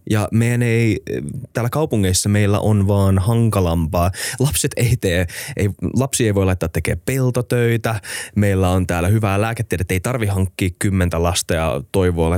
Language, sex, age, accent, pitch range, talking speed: Finnish, male, 20-39, native, 90-110 Hz, 150 wpm